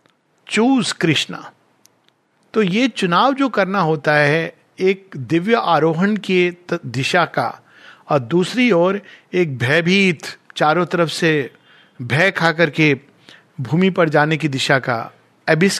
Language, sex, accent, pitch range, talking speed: Hindi, male, native, 145-190 Hz, 125 wpm